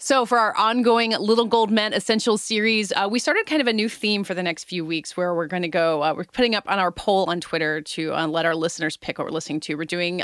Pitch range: 165-220 Hz